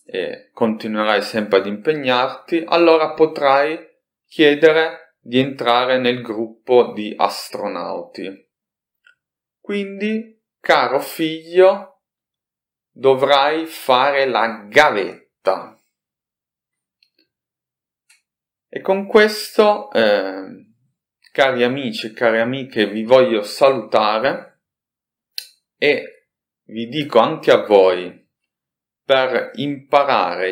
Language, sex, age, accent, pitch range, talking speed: Italian, male, 30-49, native, 115-170 Hz, 80 wpm